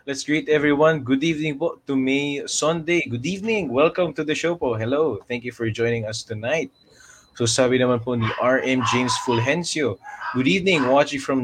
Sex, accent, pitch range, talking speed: male, Filipino, 120-145 Hz, 185 wpm